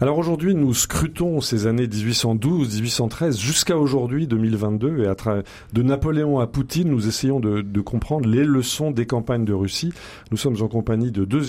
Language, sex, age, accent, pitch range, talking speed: French, male, 40-59, French, 105-130 Hz, 185 wpm